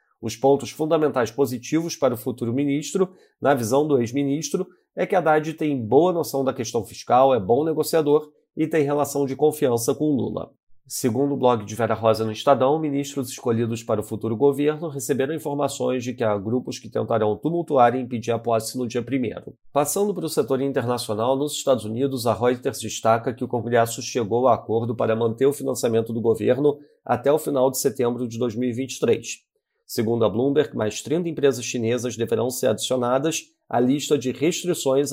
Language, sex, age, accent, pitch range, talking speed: Portuguese, male, 40-59, Brazilian, 115-145 Hz, 180 wpm